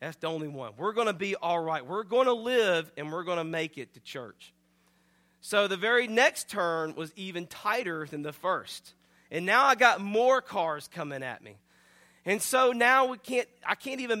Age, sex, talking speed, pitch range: 40-59, male, 210 wpm, 170-235 Hz